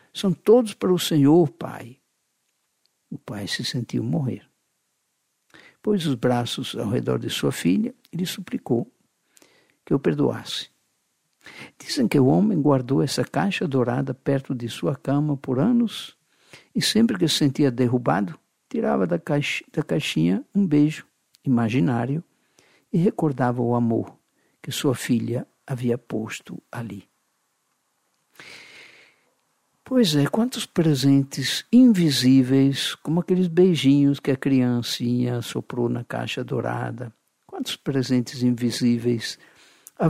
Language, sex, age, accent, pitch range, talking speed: Portuguese, male, 60-79, Brazilian, 125-180 Hz, 120 wpm